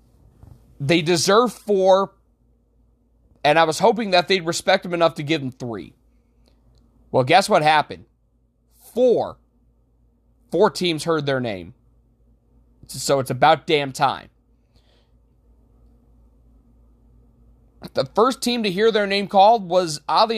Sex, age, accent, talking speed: male, 30-49, American, 120 wpm